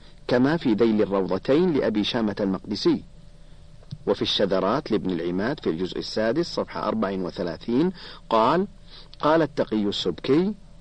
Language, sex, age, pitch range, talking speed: Arabic, male, 50-69, 110-160 Hz, 110 wpm